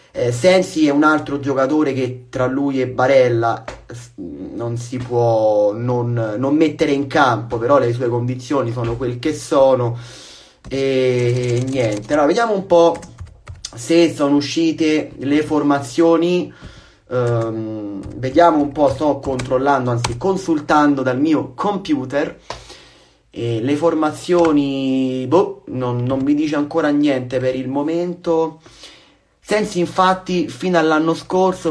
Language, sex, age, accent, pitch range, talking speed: Italian, male, 30-49, native, 125-160 Hz, 130 wpm